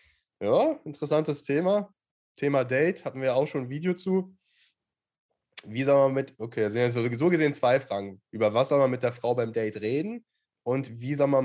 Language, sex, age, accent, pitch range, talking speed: German, male, 20-39, German, 110-140 Hz, 190 wpm